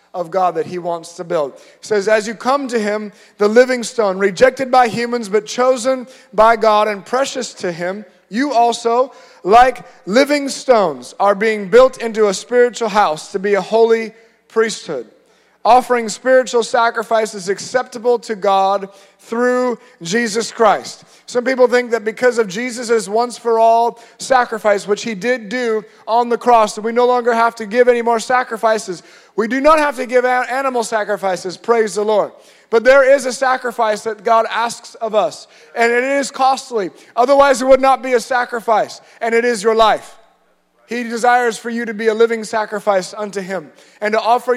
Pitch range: 215-245 Hz